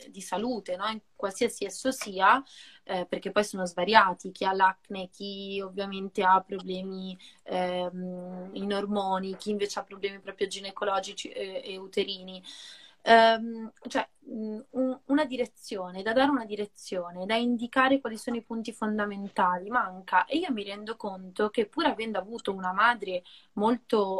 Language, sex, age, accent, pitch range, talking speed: Italian, female, 20-39, native, 190-230 Hz, 145 wpm